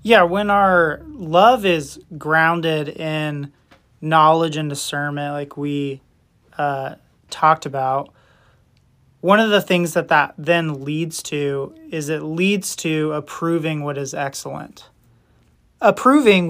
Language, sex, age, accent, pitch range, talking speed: English, male, 30-49, American, 150-175 Hz, 120 wpm